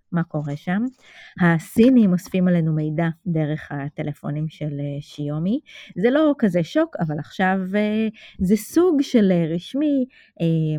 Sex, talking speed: female, 120 wpm